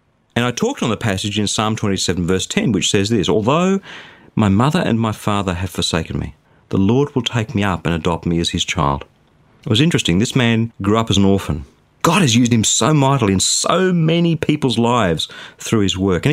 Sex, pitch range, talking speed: male, 100-155 Hz, 220 wpm